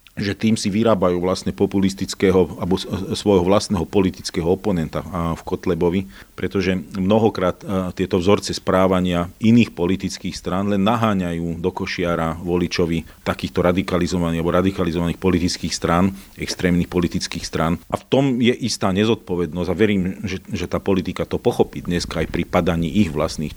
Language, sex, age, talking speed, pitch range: Slovak, male, 40-59, 140 wpm, 85-100 Hz